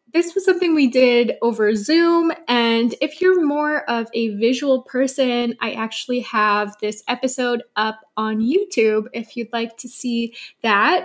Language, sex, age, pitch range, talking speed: English, female, 20-39, 225-270 Hz, 155 wpm